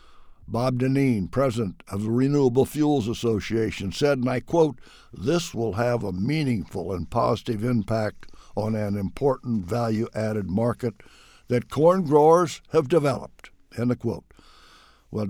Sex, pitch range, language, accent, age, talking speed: male, 105-135 Hz, English, American, 60-79, 135 wpm